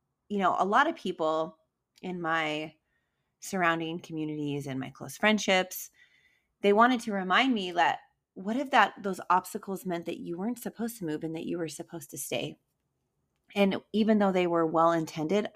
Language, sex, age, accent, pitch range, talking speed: English, female, 30-49, American, 165-200 Hz, 175 wpm